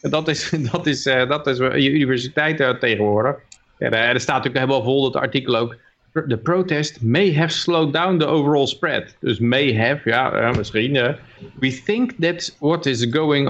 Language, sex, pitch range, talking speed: Dutch, male, 115-145 Hz, 200 wpm